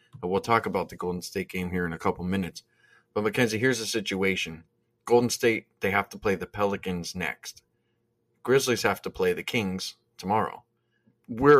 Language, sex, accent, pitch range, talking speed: English, male, American, 95-115 Hz, 180 wpm